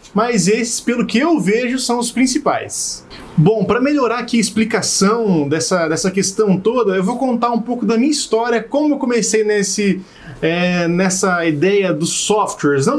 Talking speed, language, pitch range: 160 wpm, Portuguese, 185-235 Hz